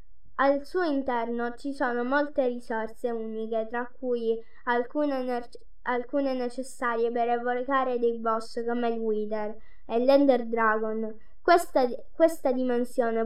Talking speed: 120 wpm